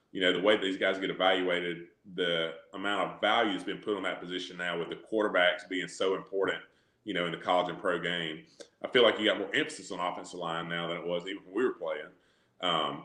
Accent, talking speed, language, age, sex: American, 245 wpm, English, 30-49, male